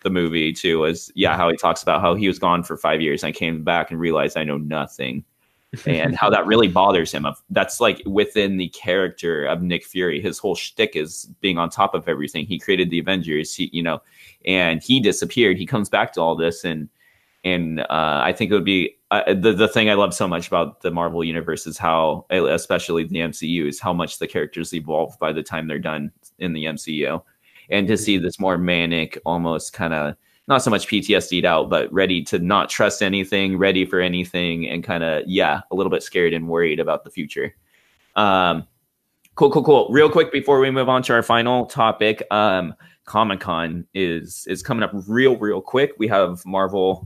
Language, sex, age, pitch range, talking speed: English, male, 20-39, 85-100 Hz, 210 wpm